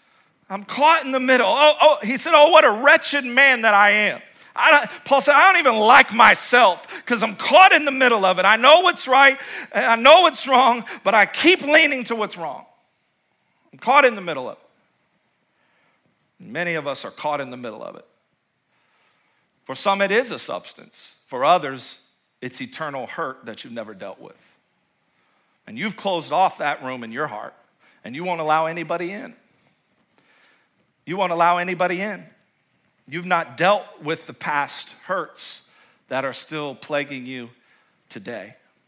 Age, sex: 40-59, male